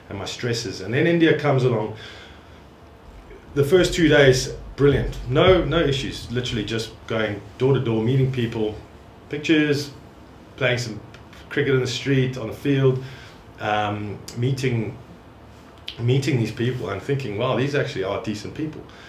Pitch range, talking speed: 105-130 Hz, 140 wpm